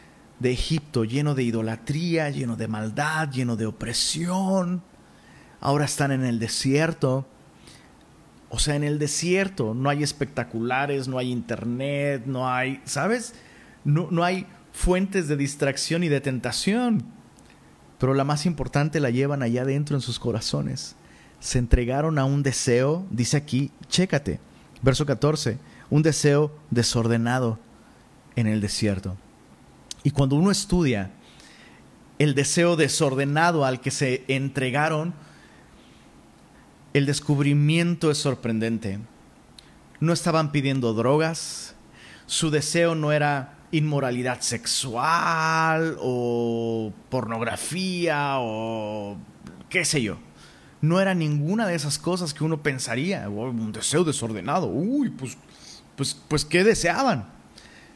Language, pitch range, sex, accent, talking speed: Spanish, 125-160 Hz, male, Mexican, 120 wpm